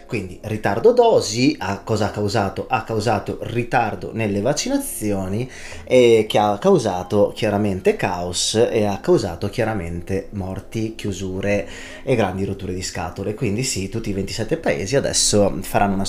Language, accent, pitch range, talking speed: Italian, native, 105-145 Hz, 140 wpm